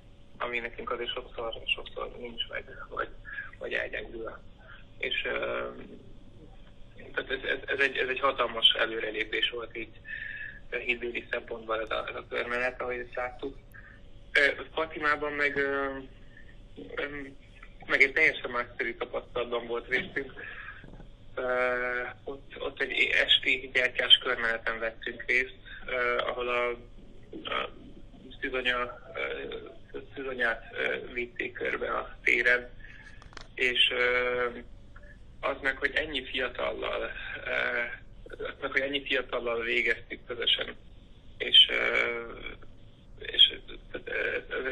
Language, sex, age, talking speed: Hungarian, male, 20-39, 90 wpm